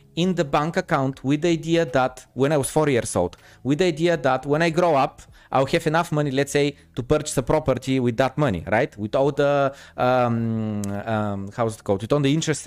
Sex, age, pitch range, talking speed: male, 30-49, 125-170 Hz, 230 wpm